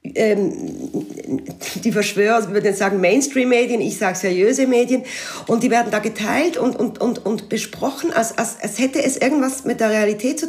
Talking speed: 185 wpm